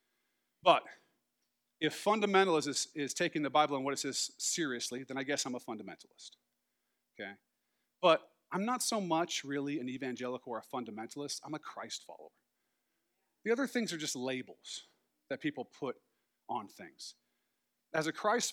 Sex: male